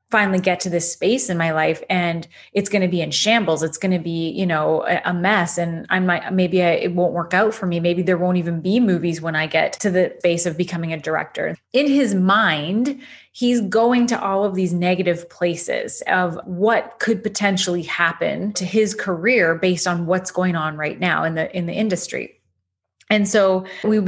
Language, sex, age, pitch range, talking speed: English, female, 30-49, 175-210 Hz, 205 wpm